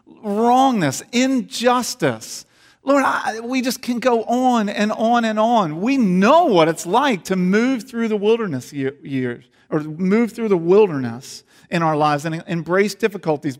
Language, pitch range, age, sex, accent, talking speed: English, 180-240 Hz, 50-69, male, American, 150 wpm